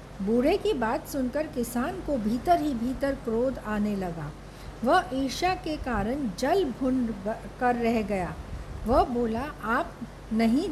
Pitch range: 230-275 Hz